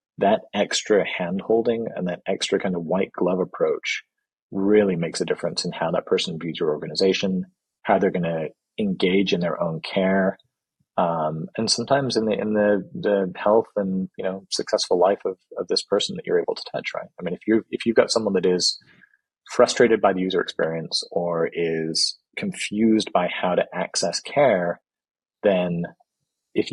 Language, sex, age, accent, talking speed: English, male, 30-49, American, 180 wpm